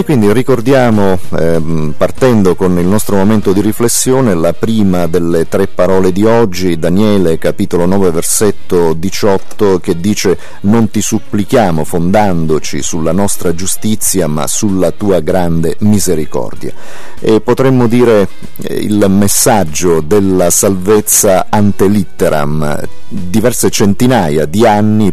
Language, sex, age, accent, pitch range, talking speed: Italian, male, 40-59, native, 85-105 Hz, 120 wpm